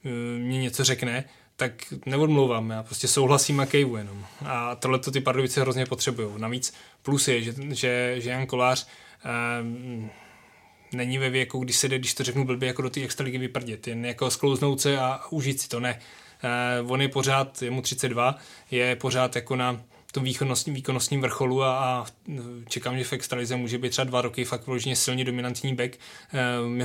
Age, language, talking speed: 20-39, Czech, 170 wpm